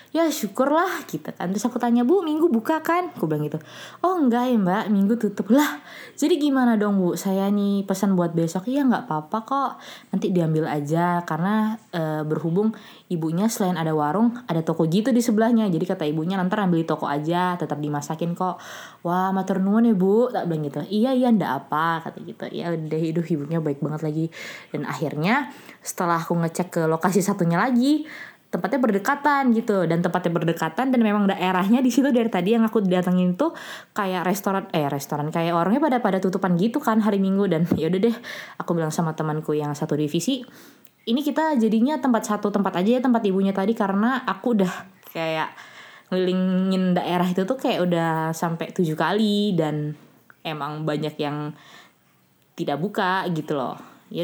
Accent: native